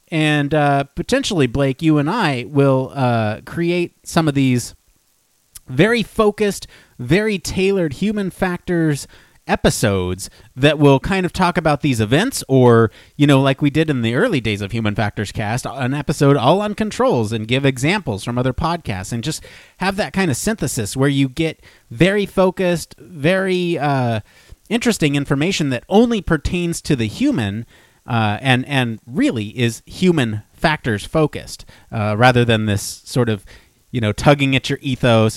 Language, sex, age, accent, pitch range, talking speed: English, male, 30-49, American, 110-155 Hz, 160 wpm